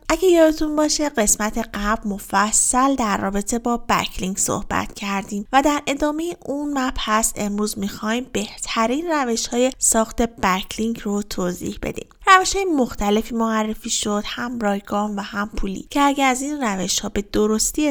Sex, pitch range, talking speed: female, 210-270 Hz, 150 wpm